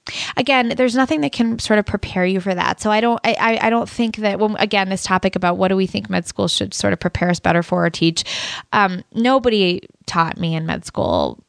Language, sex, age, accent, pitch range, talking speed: English, female, 10-29, American, 175-205 Hz, 240 wpm